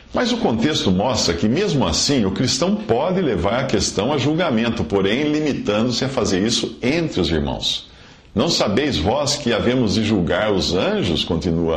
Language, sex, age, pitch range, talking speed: English, male, 50-69, 85-120 Hz, 170 wpm